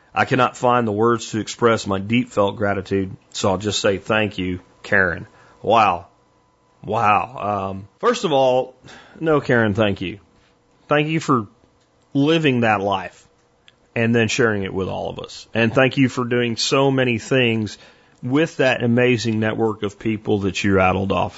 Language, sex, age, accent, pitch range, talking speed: English, male, 40-59, American, 100-130 Hz, 165 wpm